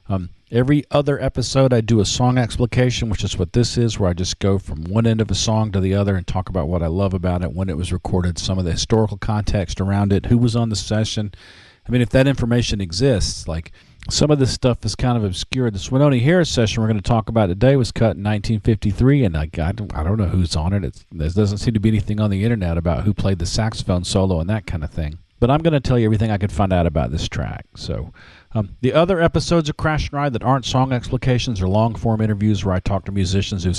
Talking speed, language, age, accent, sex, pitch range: 260 wpm, English, 40-59, American, male, 90-120 Hz